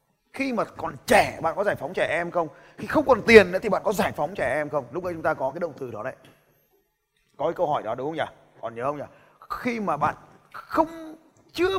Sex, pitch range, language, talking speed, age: male, 165-245 Hz, Vietnamese, 260 wpm, 20-39